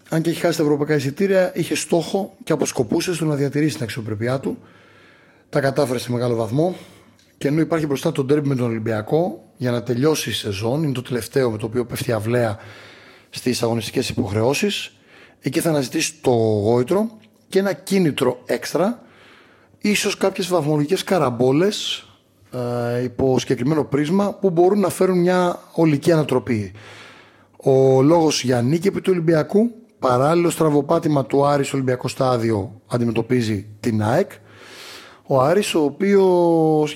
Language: Greek